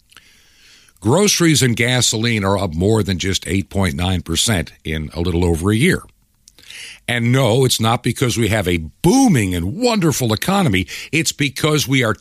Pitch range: 90-120 Hz